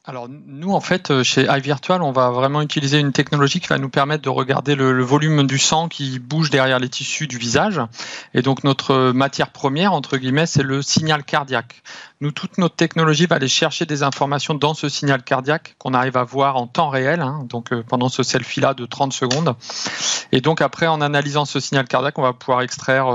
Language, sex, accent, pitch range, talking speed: French, male, French, 125-145 Hz, 215 wpm